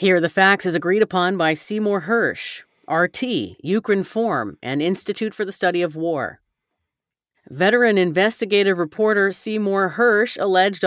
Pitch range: 170-205 Hz